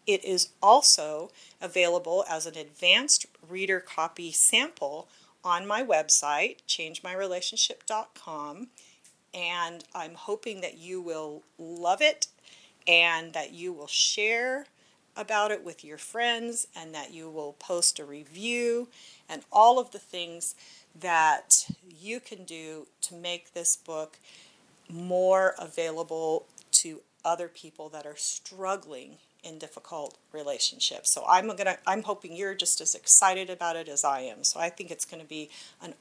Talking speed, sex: 140 wpm, female